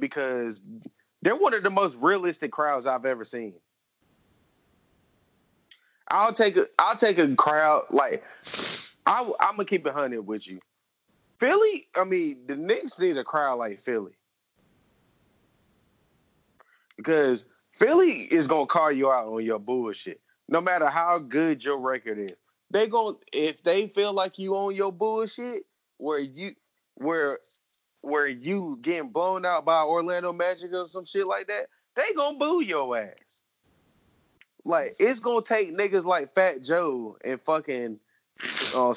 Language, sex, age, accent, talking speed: English, male, 20-39, American, 145 wpm